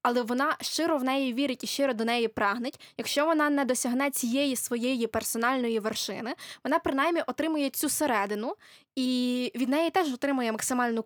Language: Ukrainian